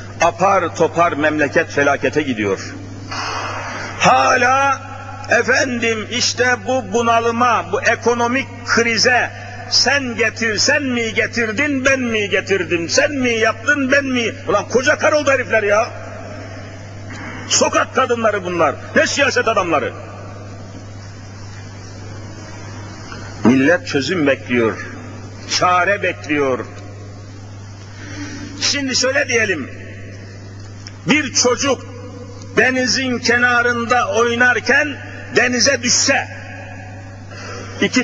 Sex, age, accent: male, 60-79, native